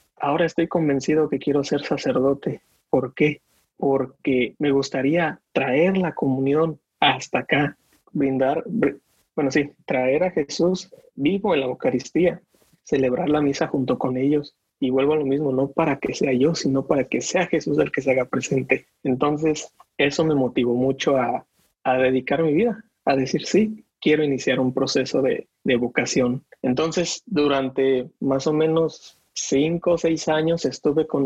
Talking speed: 160 wpm